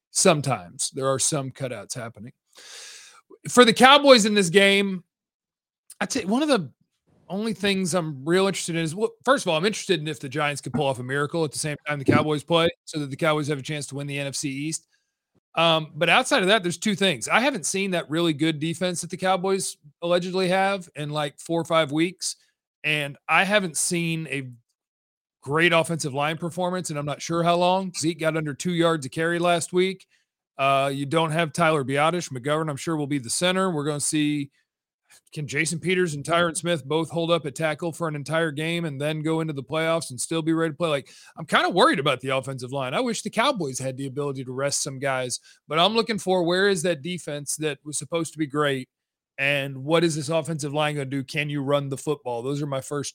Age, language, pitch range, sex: 40-59, English, 145-180 Hz, male